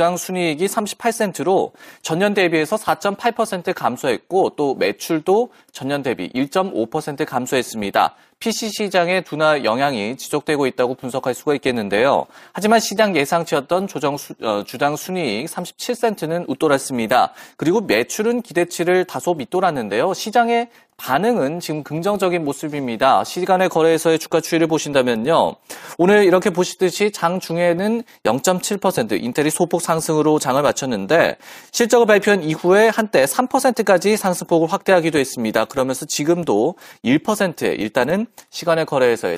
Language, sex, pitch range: Korean, male, 145-205 Hz